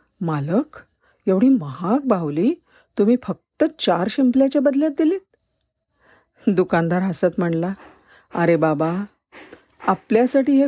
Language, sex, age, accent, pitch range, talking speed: Marathi, female, 50-69, native, 160-220 Hz, 95 wpm